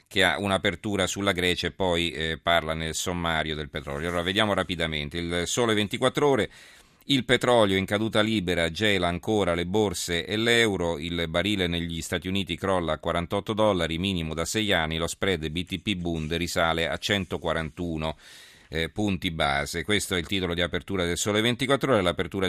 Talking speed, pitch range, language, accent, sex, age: 175 wpm, 80-95 Hz, Italian, native, male, 40-59